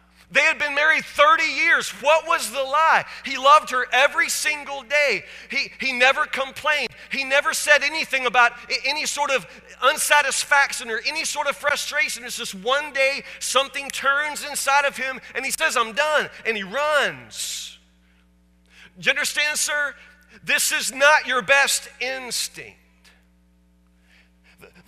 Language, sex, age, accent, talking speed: English, male, 40-59, American, 150 wpm